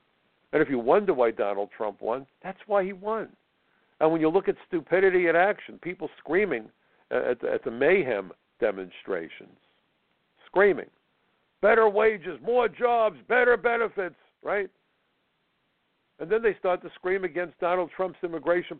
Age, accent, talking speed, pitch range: 60-79, American, 145 wpm, 145-225 Hz